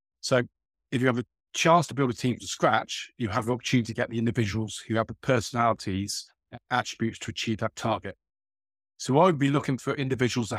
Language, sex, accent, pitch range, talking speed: English, male, British, 110-125 Hz, 215 wpm